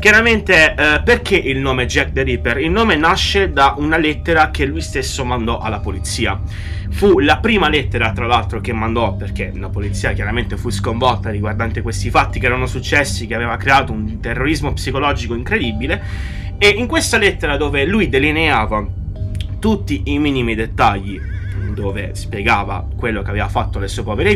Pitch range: 95-115 Hz